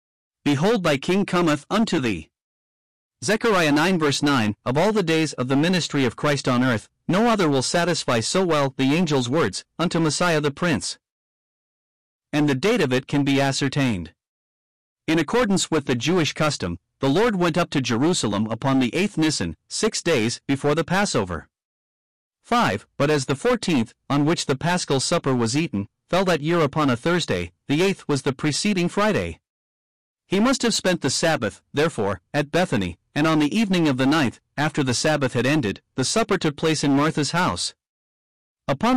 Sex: male